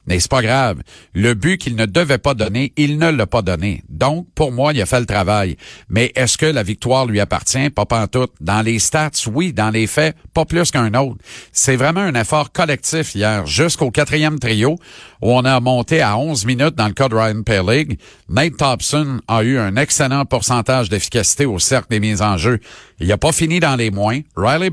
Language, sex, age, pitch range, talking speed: French, male, 50-69, 105-135 Hz, 220 wpm